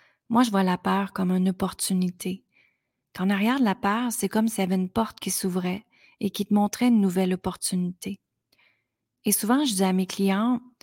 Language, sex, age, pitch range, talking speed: French, female, 30-49, 180-210 Hz, 200 wpm